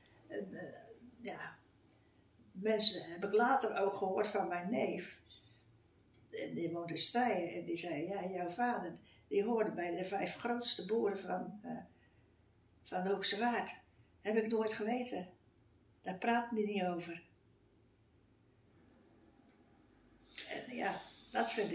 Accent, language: Dutch, Dutch